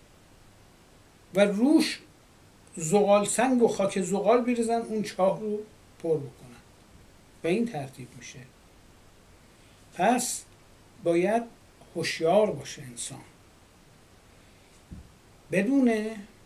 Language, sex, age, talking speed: Persian, male, 60-79, 85 wpm